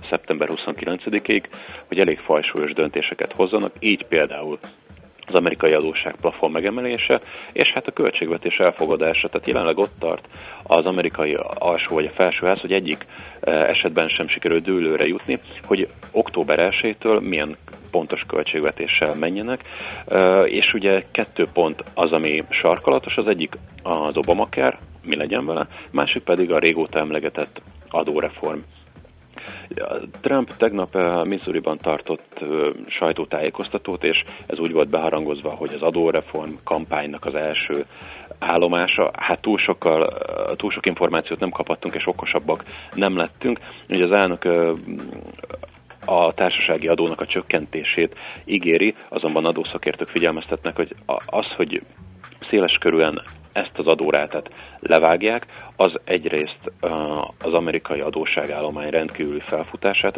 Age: 30-49